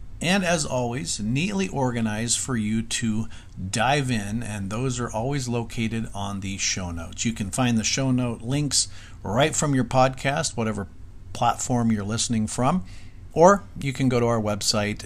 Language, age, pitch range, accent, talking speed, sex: English, 50-69, 100-130 Hz, American, 165 wpm, male